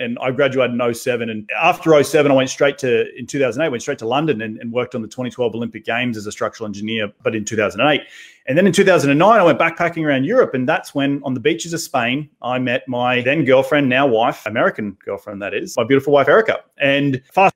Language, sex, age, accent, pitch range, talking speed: English, male, 30-49, Australian, 125-160 Hz, 230 wpm